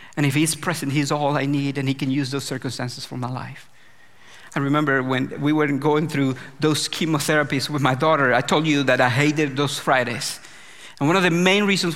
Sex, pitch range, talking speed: male, 150-215 Hz, 215 wpm